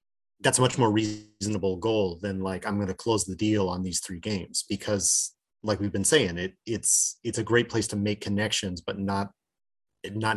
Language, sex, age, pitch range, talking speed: English, male, 30-49, 95-110 Hz, 205 wpm